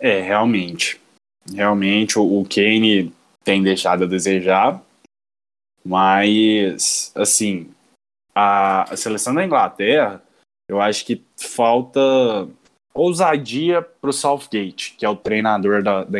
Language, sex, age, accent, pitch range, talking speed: Portuguese, male, 20-39, Brazilian, 105-175 Hz, 115 wpm